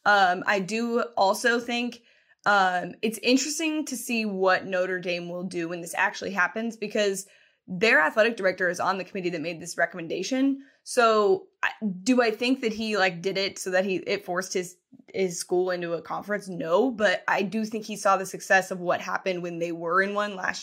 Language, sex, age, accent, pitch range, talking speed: English, female, 10-29, American, 180-220 Hz, 205 wpm